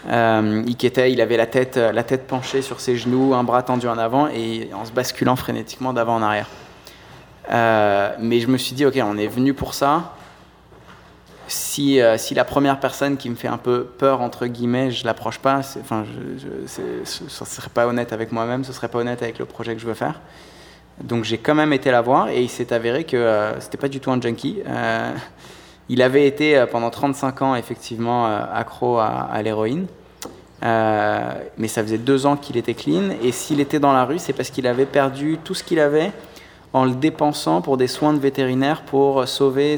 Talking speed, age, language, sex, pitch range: 215 wpm, 20-39, English, male, 115-135 Hz